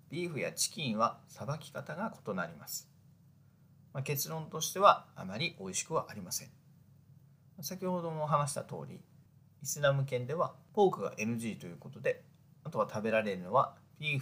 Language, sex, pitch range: Japanese, male, 135-165 Hz